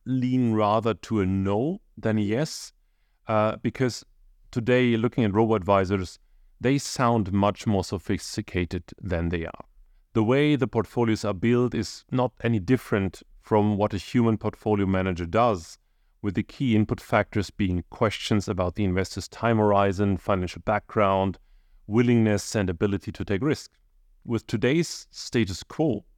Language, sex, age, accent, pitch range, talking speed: English, male, 40-59, German, 100-120 Hz, 145 wpm